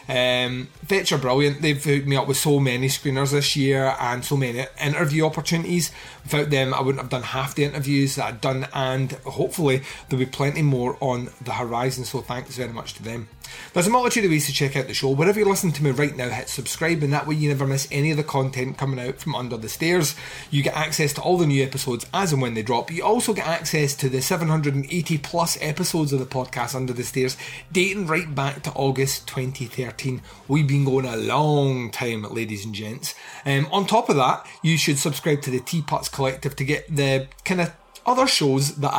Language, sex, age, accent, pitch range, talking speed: English, male, 30-49, British, 130-155 Hz, 220 wpm